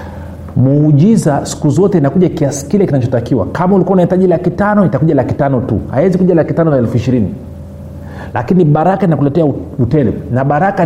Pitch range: 130-170 Hz